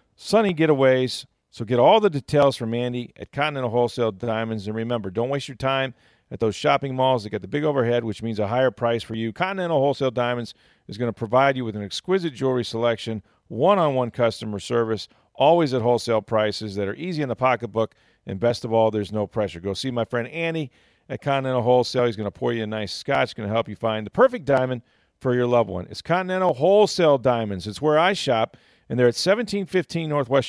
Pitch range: 115-150 Hz